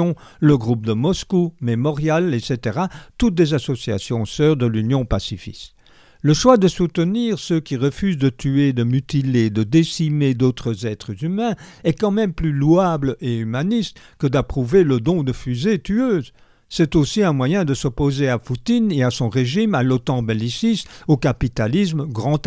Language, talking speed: French, 165 wpm